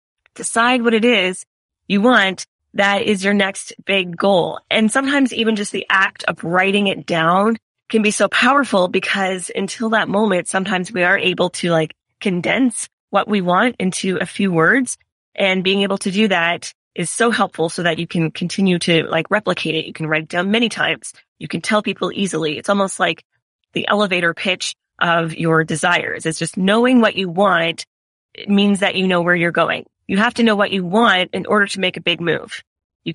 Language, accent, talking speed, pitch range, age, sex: English, American, 200 wpm, 175-215 Hz, 20-39, female